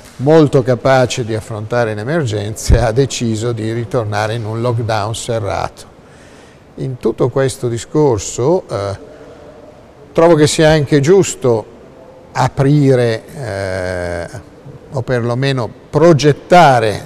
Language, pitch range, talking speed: Italian, 110-135 Hz, 100 wpm